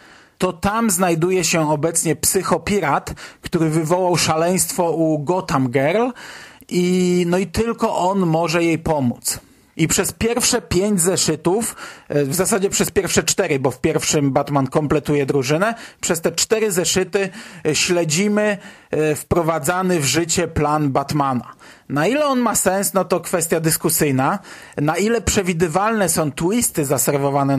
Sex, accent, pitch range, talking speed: male, native, 155-195 Hz, 135 wpm